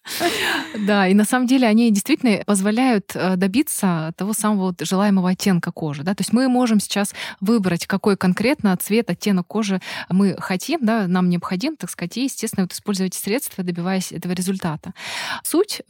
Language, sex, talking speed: Russian, female, 160 wpm